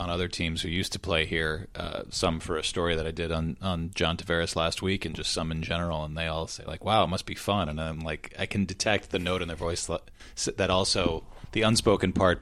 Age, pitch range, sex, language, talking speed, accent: 30-49, 80-95 Hz, male, English, 255 wpm, American